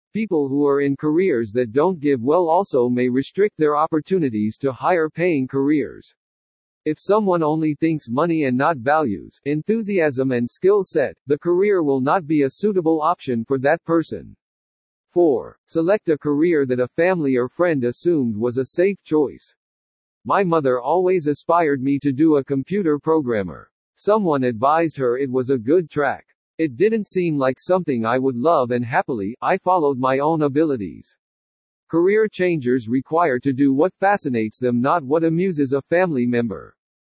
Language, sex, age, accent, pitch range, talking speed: English, male, 50-69, American, 130-170 Hz, 165 wpm